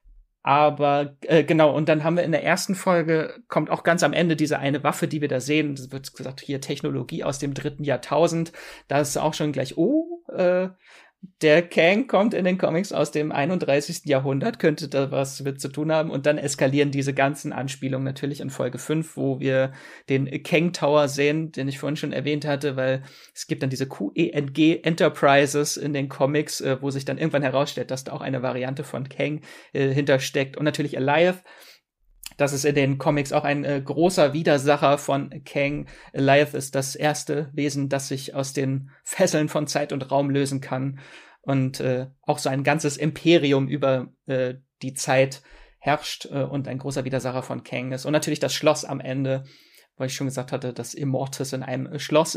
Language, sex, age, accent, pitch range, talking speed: German, male, 30-49, German, 135-155 Hz, 195 wpm